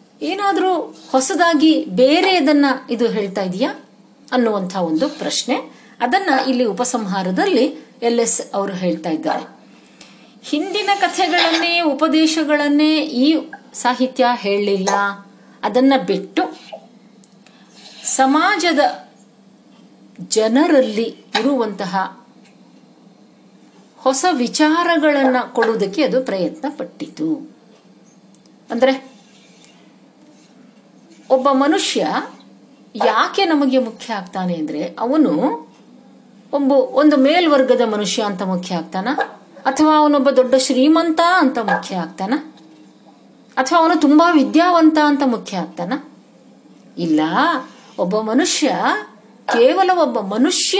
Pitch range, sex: 210-305 Hz, female